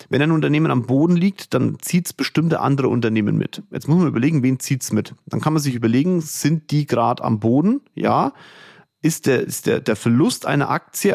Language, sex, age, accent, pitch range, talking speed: German, male, 30-49, German, 125-170 Hz, 210 wpm